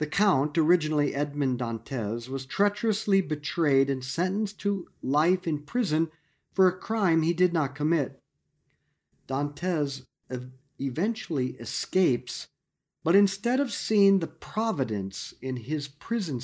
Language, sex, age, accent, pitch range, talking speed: English, male, 50-69, American, 135-190 Hz, 120 wpm